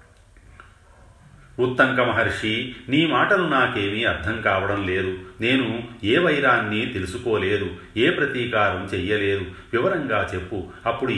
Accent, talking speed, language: native, 95 wpm, Telugu